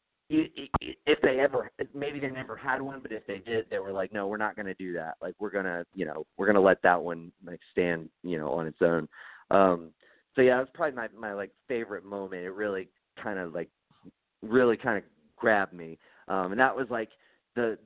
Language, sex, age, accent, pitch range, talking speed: English, male, 30-49, American, 95-115 Hz, 230 wpm